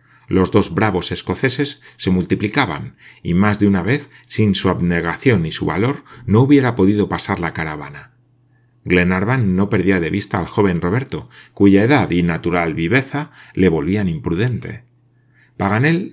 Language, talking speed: Spanish, 150 wpm